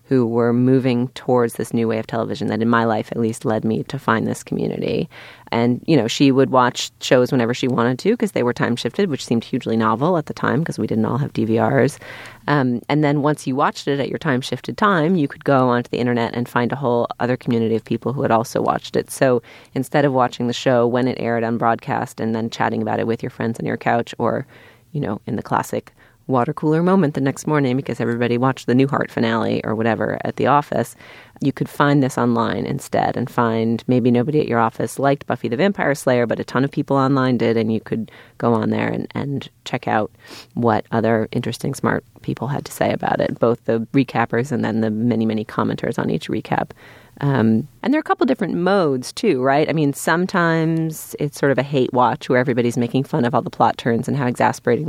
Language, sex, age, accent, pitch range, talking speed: English, female, 30-49, American, 115-140 Hz, 235 wpm